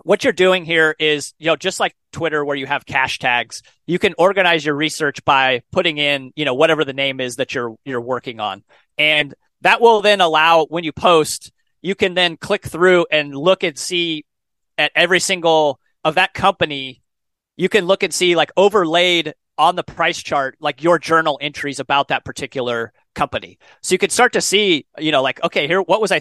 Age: 30-49